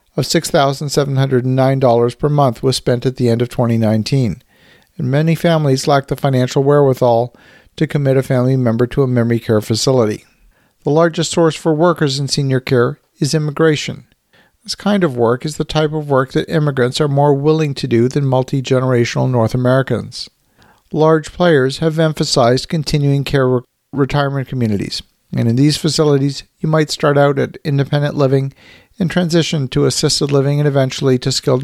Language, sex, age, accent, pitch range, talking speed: English, male, 50-69, American, 125-155 Hz, 165 wpm